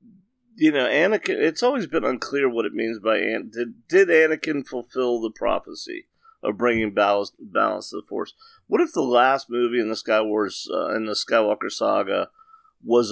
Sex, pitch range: male, 110-130 Hz